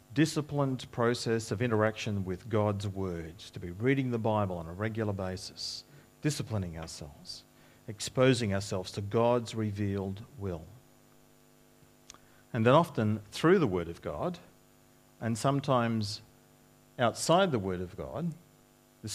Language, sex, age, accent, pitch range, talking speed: English, male, 50-69, Australian, 95-120 Hz, 125 wpm